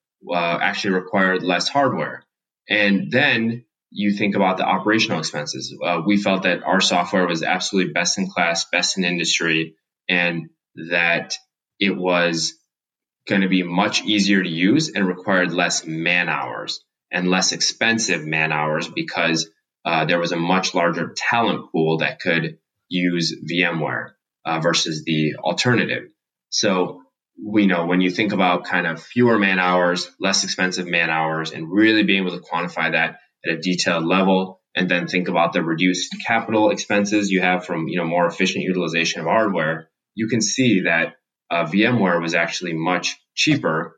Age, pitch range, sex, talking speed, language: 20-39, 85-95 Hz, male, 165 wpm, English